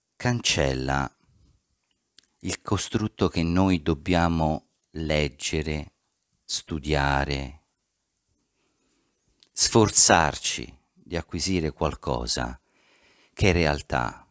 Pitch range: 70-90 Hz